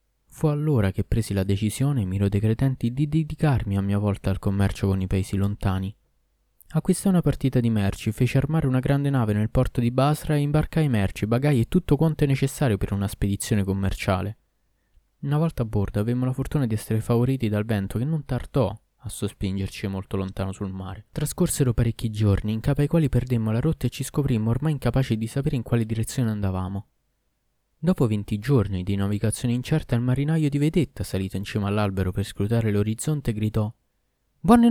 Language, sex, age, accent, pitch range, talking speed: Italian, male, 20-39, native, 105-145 Hz, 185 wpm